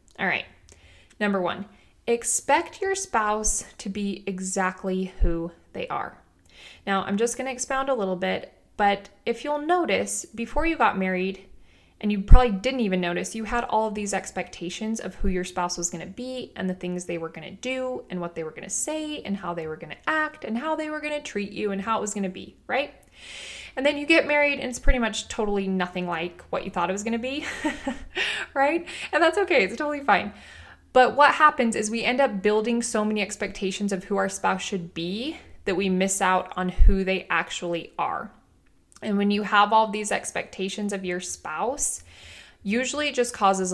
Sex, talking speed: female, 215 wpm